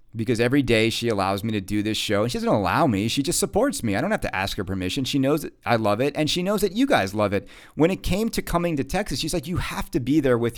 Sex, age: male, 40-59